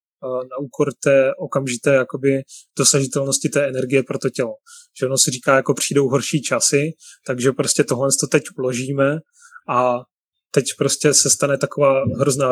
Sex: male